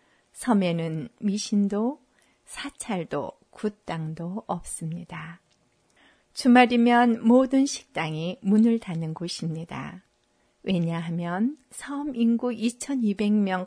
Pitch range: 175-240 Hz